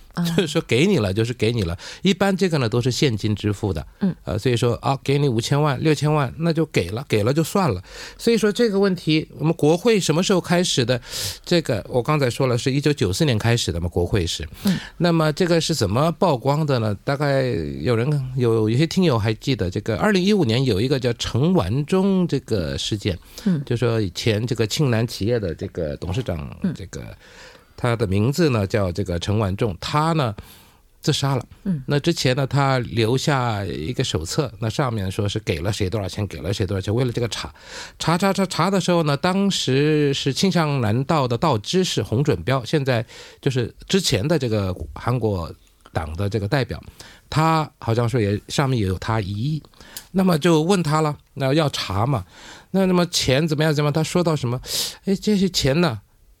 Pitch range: 110-160 Hz